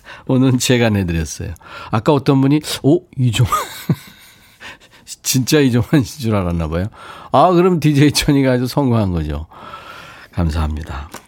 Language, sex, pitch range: Korean, male, 110-155 Hz